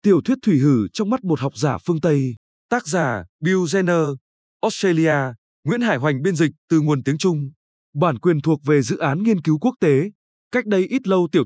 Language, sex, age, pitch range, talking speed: Vietnamese, male, 20-39, 140-200 Hz, 210 wpm